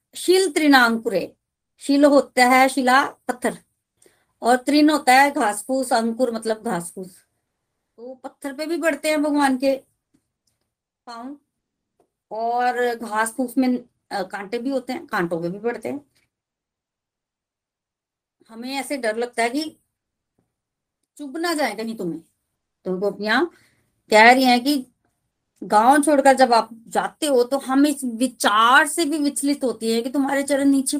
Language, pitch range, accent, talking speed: Hindi, 235-290 Hz, native, 145 wpm